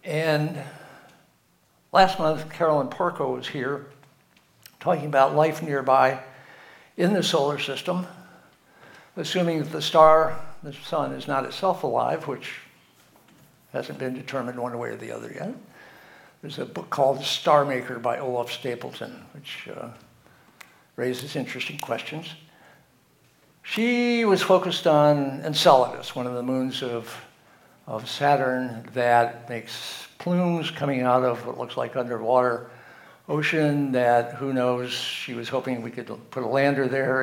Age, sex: 60-79, male